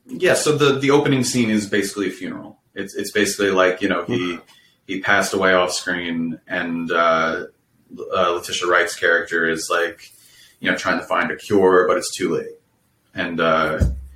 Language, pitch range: English, 80-100 Hz